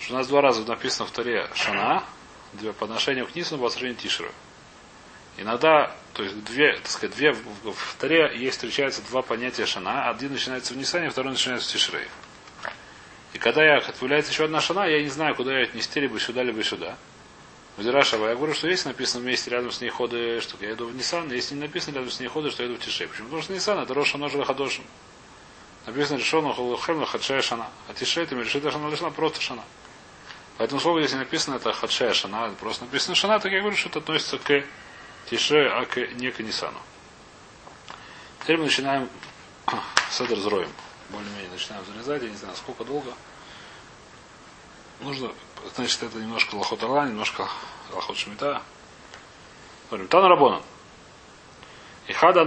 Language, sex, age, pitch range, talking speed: Russian, male, 30-49, 120-150 Hz, 170 wpm